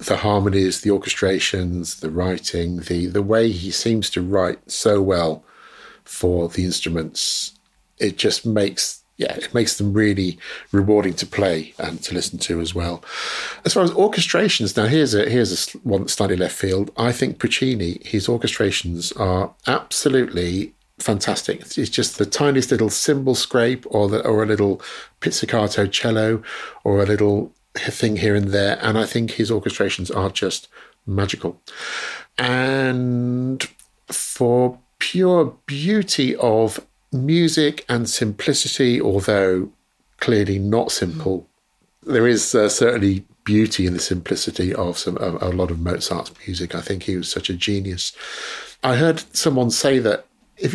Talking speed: 150 wpm